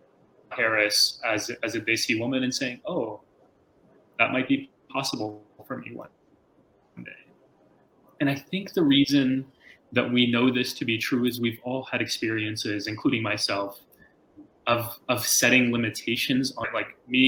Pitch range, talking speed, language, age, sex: 110-135 Hz, 150 wpm, English, 30-49, male